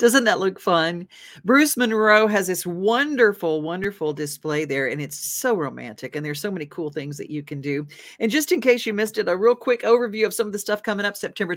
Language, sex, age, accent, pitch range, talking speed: English, female, 50-69, American, 160-215 Hz, 235 wpm